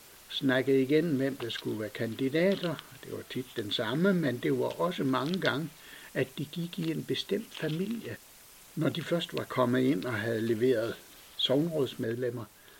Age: 60-79